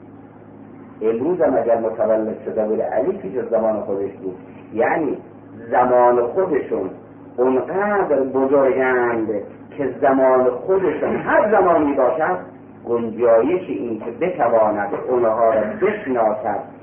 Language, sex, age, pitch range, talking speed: Persian, male, 50-69, 125-195 Hz, 105 wpm